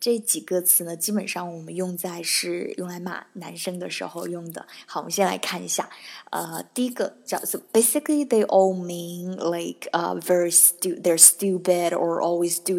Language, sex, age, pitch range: Chinese, female, 20-39, 170-190 Hz